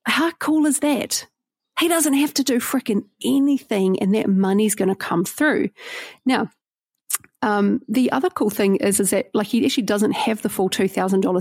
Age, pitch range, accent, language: 30-49, 190-235 Hz, Australian, English